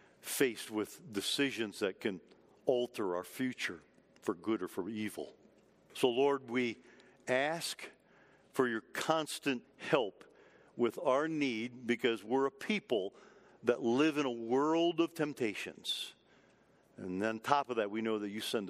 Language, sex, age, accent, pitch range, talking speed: English, male, 50-69, American, 110-155 Hz, 145 wpm